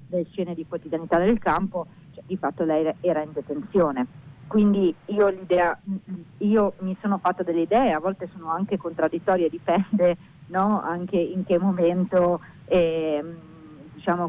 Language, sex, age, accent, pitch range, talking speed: Italian, female, 40-59, native, 170-210 Hz, 145 wpm